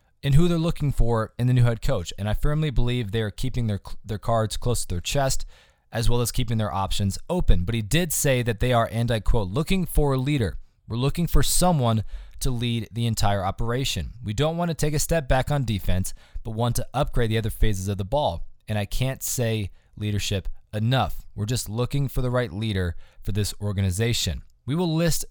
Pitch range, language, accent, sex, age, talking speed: 105-130 Hz, English, American, male, 20-39, 220 wpm